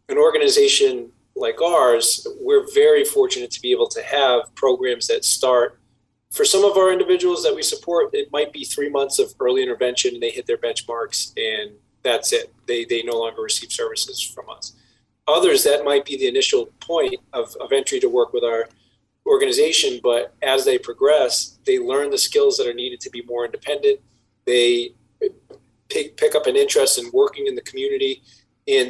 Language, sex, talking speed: English, male, 185 wpm